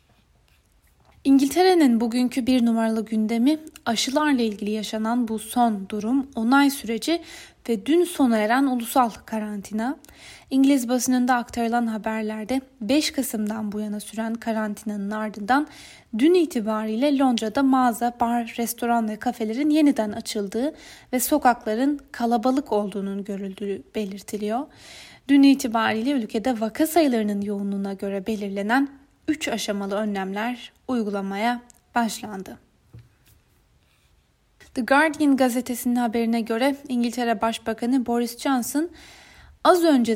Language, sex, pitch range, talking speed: Turkish, female, 220-270 Hz, 105 wpm